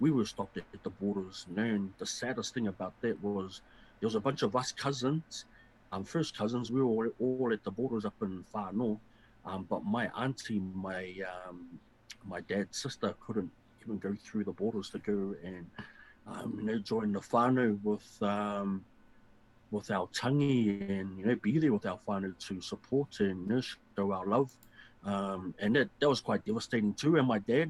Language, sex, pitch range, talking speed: English, male, 100-135 Hz, 195 wpm